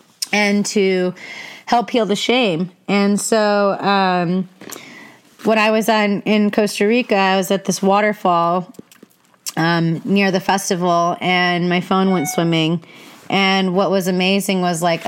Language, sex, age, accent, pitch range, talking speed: English, female, 30-49, American, 185-220 Hz, 145 wpm